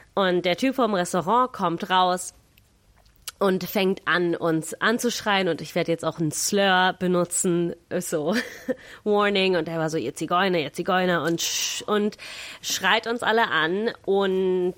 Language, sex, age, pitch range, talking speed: German, female, 30-49, 170-205 Hz, 150 wpm